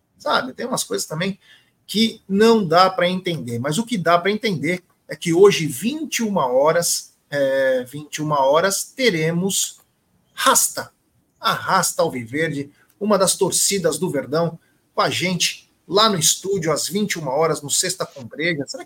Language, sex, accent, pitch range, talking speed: Portuguese, male, Brazilian, 165-220 Hz, 150 wpm